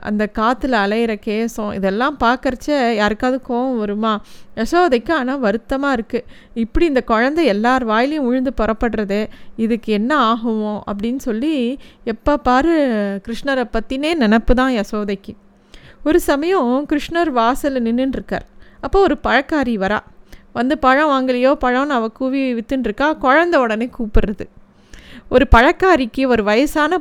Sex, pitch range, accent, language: female, 225-275 Hz, native, Tamil